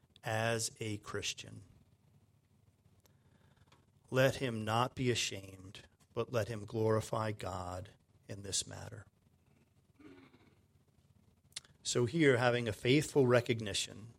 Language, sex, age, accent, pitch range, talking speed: English, male, 40-59, American, 115-155 Hz, 95 wpm